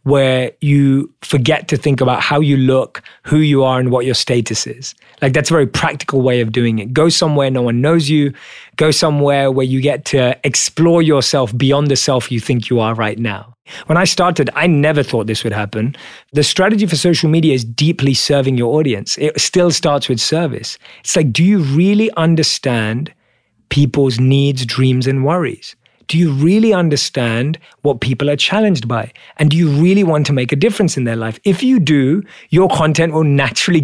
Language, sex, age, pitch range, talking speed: English, male, 30-49, 130-170 Hz, 200 wpm